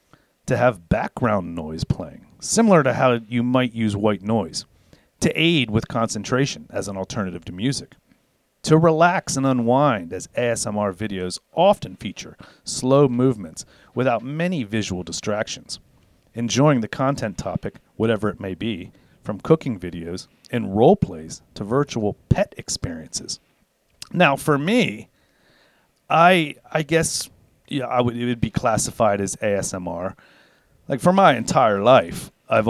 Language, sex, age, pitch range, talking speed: English, male, 40-59, 105-145 Hz, 140 wpm